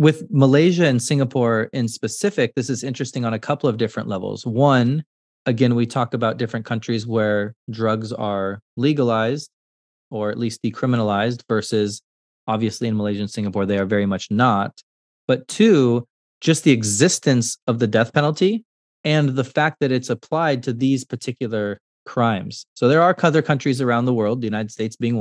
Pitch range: 115-140 Hz